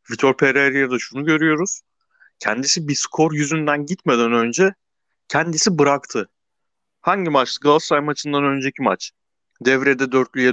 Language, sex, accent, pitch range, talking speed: Turkish, male, native, 120-150 Hz, 115 wpm